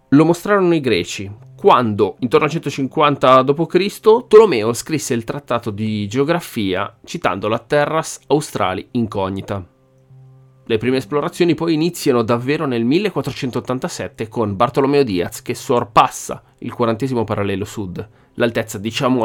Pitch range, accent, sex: 110-140 Hz, native, male